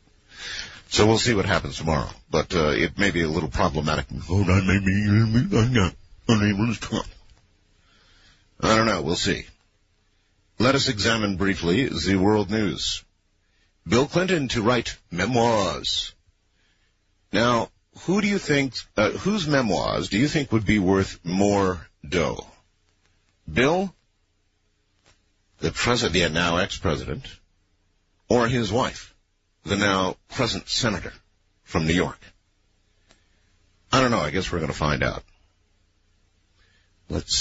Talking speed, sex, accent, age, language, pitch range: 115 wpm, male, American, 50-69, English, 85-105 Hz